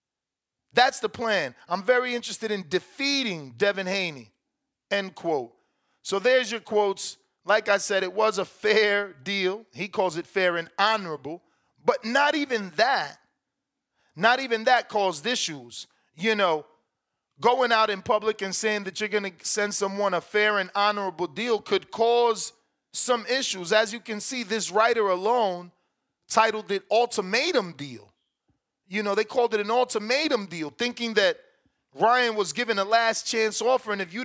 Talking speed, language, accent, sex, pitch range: 165 wpm, English, American, male, 195-235 Hz